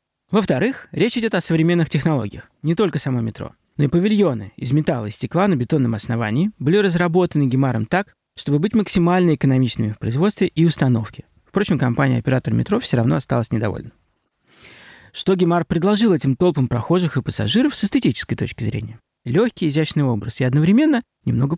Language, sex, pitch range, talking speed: Russian, male, 125-180 Hz, 160 wpm